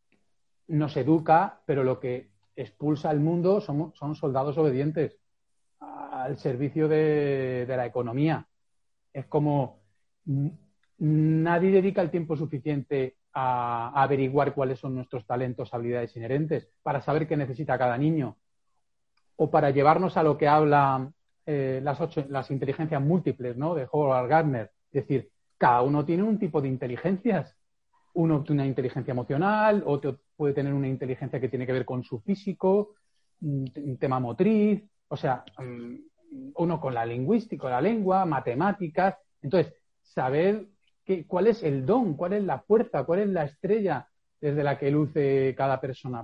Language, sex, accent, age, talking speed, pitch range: Spanish, male, Spanish, 30-49, 150 wpm, 130-170 Hz